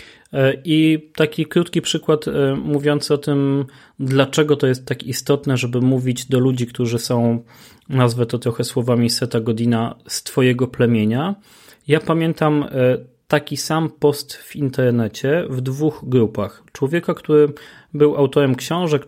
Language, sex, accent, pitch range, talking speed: Polish, male, native, 120-150 Hz, 130 wpm